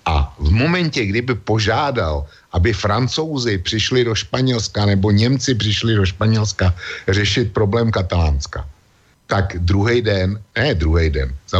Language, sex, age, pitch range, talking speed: Slovak, male, 60-79, 85-105 Hz, 130 wpm